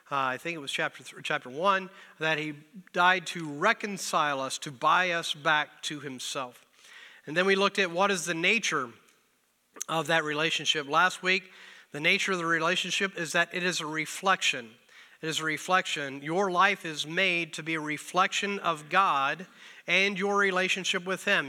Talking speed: 180 wpm